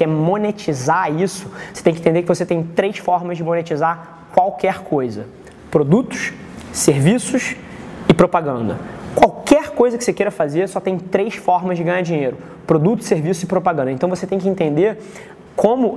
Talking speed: 165 wpm